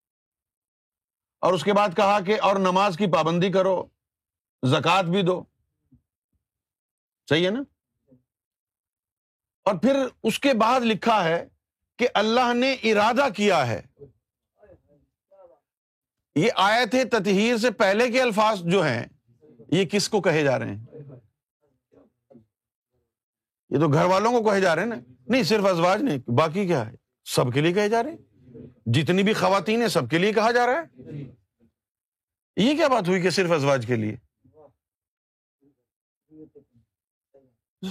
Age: 50-69